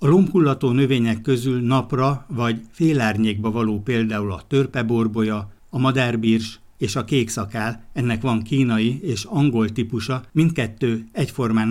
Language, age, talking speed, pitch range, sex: Hungarian, 60-79, 125 wpm, 110-125 Hz, male